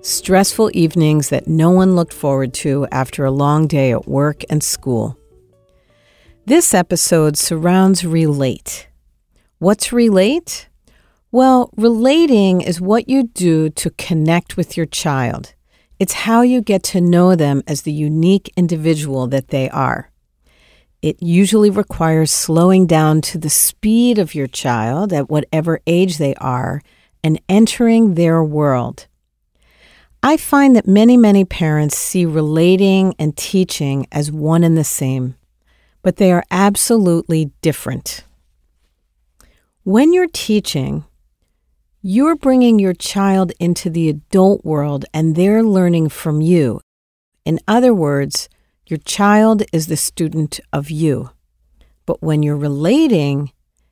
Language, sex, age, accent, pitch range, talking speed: English, female, 50-69, American, 135-190 Hz, 130 wpm